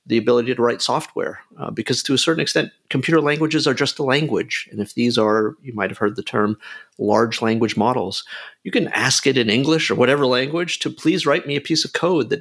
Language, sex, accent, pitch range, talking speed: English, male, American, 110-145 Hz, 225 wpm